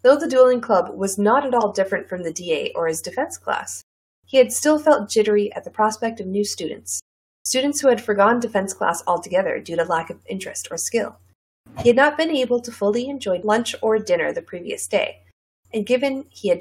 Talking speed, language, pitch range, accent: 215 wpm, English, 175-255 Hz, American